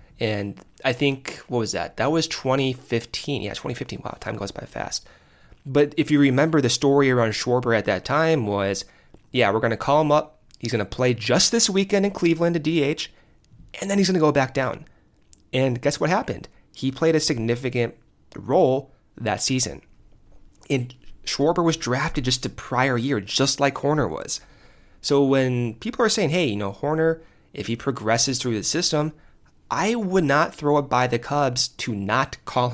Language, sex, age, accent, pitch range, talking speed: English, male, 30-49, American, 115-145 Hz, 190 wpm